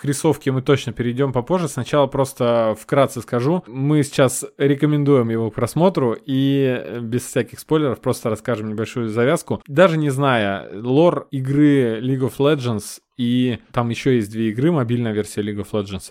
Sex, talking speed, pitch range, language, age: male, 155 wpm, 115-145 Hz, Russian, 20-39